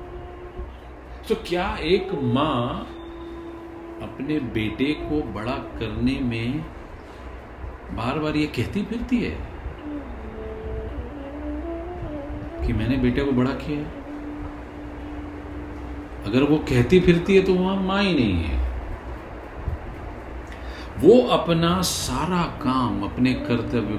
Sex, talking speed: male, 100 wpm